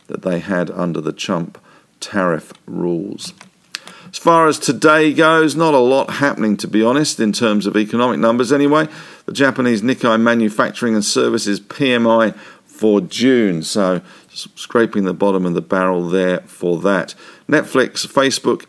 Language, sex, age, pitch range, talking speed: English, male, 50-69, 95-120 Hz, 150 wpm